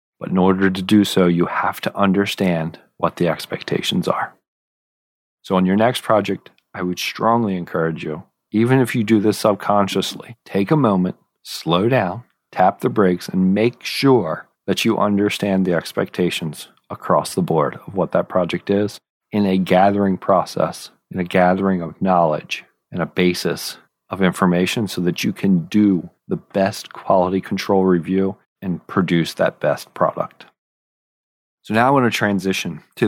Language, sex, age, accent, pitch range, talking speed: English, male, 40-59, American, 90-110 Hz, 165 wpm